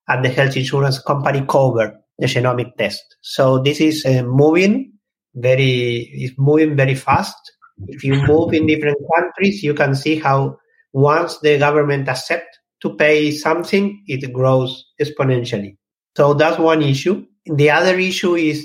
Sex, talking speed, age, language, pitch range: male, 150 wpm, 50-69, English, 130-155 Hz